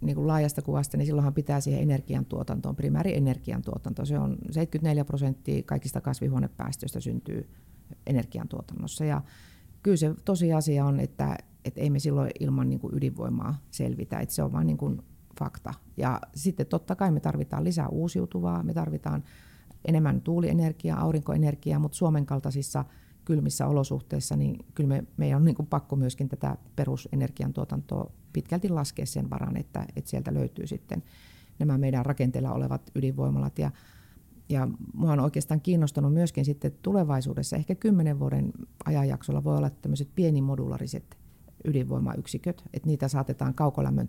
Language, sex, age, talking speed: Finnish, female, 30-49, 140 wpm